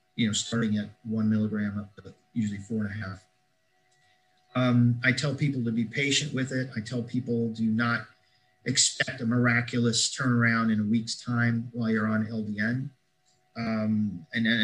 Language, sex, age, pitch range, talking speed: English, male, 40-59, 110-125 Hz, 170 wpm